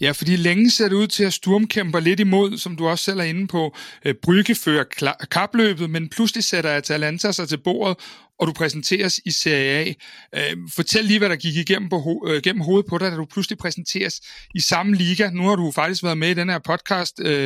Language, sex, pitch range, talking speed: Danish, male, 155-195 Hz, 215 wpm